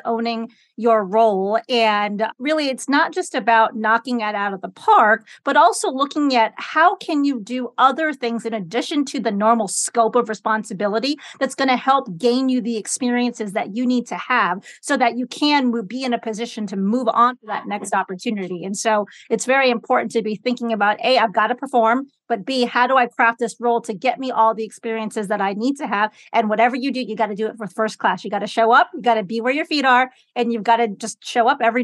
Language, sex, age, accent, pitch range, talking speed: English, female, 40-59, American, 220-255 Hz, 240 wpm